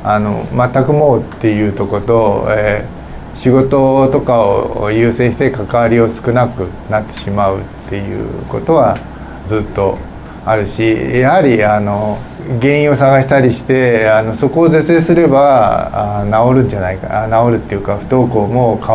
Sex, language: male, Japanese